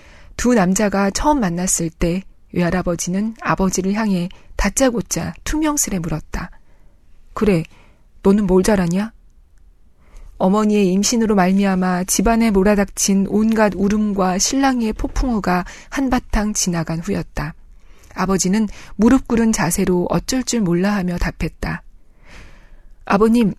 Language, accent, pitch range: Korean, native, 180-225 Hz